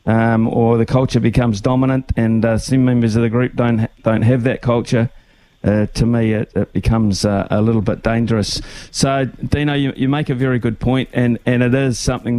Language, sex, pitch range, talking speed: English, male, 110-125 Hz, 215 wpm